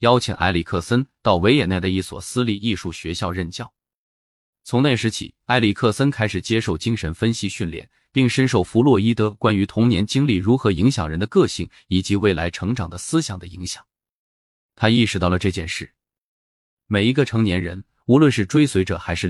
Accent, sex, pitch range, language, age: native, male, 90-115 Hz, Chinese, 20-39